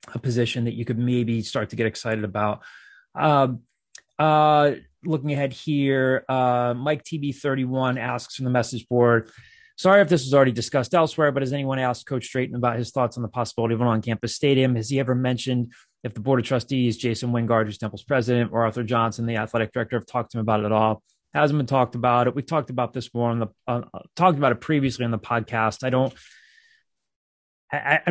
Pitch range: 120-140 Hz